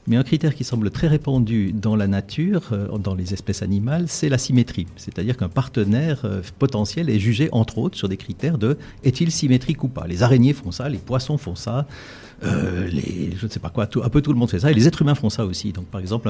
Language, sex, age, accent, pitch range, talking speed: French, male, 50-69, French, 105-130 Hz, 250 wpm